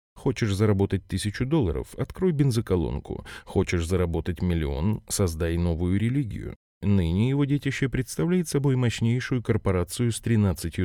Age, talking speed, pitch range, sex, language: 20-39, 115 wpm, 90-120 Hz, male, Russian